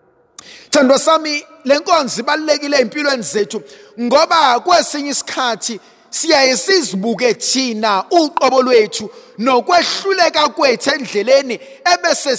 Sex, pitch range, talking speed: male, 230-315 Hz, 85 wpm